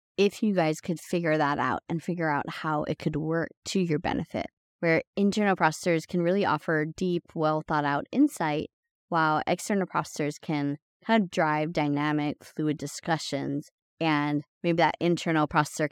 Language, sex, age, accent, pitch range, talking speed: English, female, 20-39, American, 150-185 Hz, 155 wpm